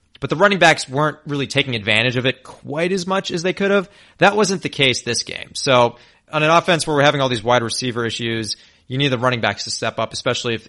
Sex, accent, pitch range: male, American, 110-135 Hz